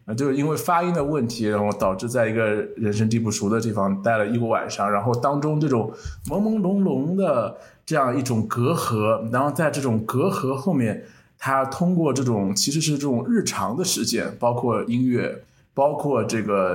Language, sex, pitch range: Chinese, male, 110-140 Hz